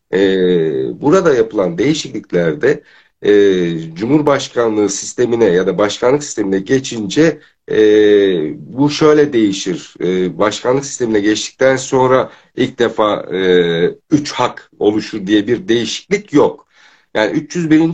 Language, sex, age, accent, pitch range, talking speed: Turkish, male, 60-79, native, 105-155 Hz, 95 wpm